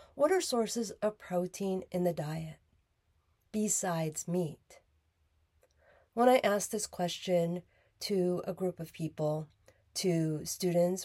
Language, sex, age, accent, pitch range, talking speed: English, female, 40-59, American, 160-220 Hz, 120 wpm